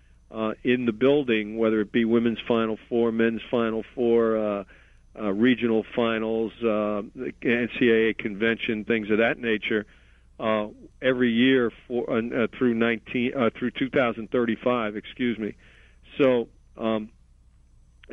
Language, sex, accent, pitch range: English, male, American, 110-125 Hz